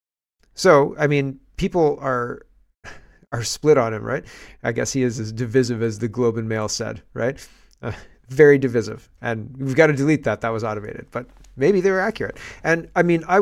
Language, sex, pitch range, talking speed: English, male, 110-135 Hz, 195 wpm